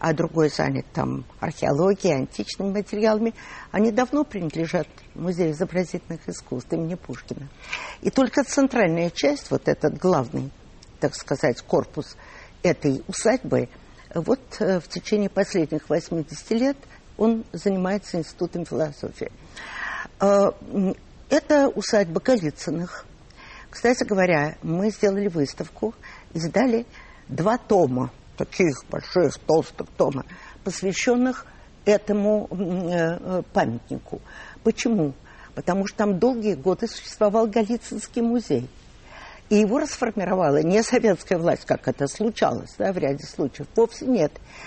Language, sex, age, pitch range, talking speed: Russian, female, 50-69, 165-225 Hz, 105 wpm